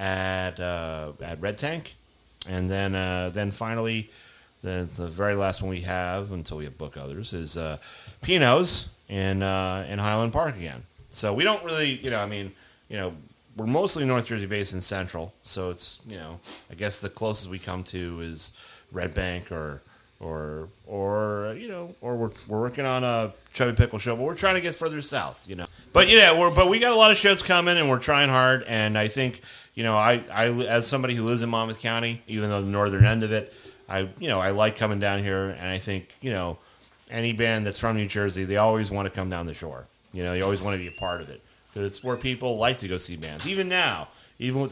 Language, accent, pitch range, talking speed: English, American, 90-115 Hz, 230 wpm